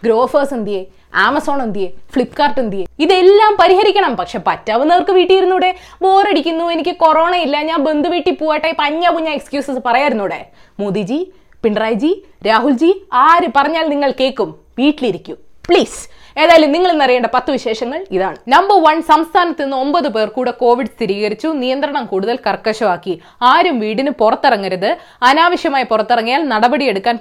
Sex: female